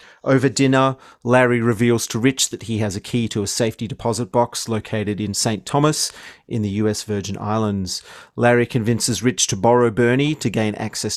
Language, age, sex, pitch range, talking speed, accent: English, 30-49, male, 105-130 Hz, 185 wpm, Australian